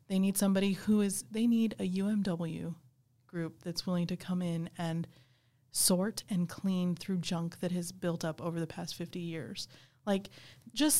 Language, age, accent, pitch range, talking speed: English, 20-39, American, 175-205 Hz, 175 wpm